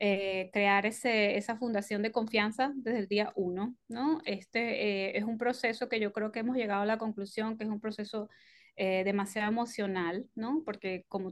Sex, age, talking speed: female, 20-39, 190 wpm